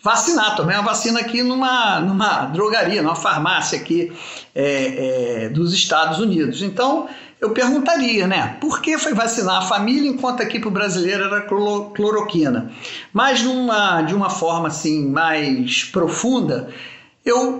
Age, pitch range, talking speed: 50-69, 165-235 Hz, 140 wpm